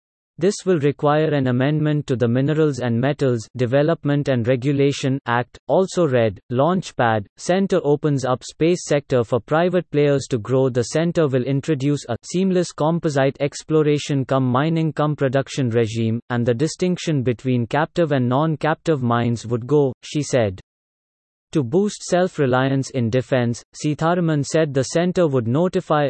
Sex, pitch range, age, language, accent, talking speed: male, 125-155 Hz, 30-49, English, Indian, 145 wpm